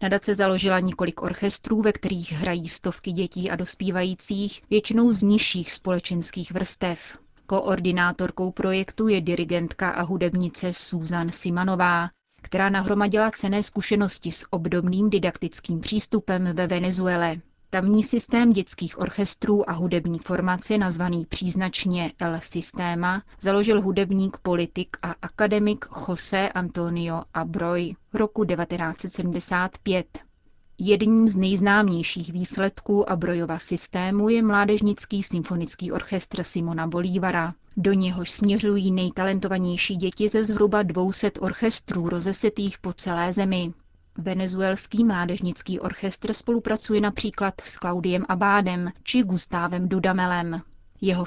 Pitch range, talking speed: 180-205 Hz, 110 wpm